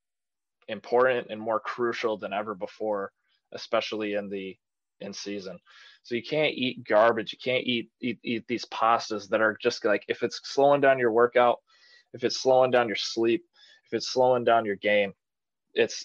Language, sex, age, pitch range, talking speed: English, male, 20-39, 110-130 Hz, 175 wpm